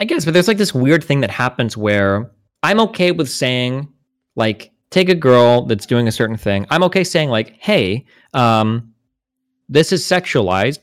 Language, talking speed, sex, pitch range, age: English, 185 wpm, male, 100-140 Hz, 20-39